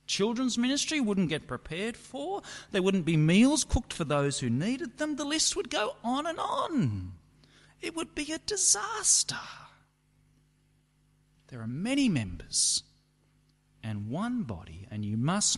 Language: English